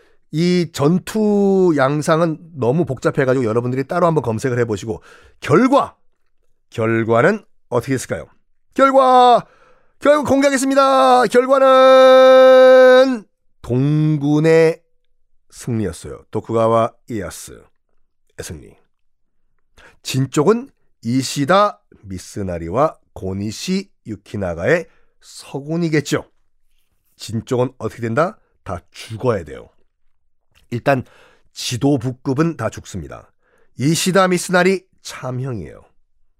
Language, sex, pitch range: Korean, male, 120-195 Hz